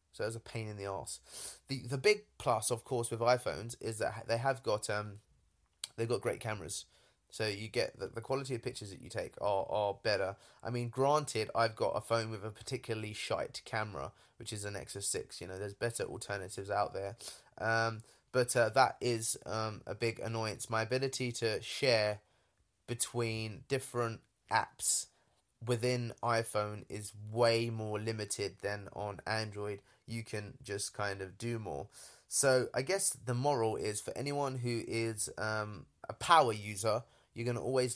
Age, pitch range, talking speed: 20-39, 105-125 Hz, 180 wpm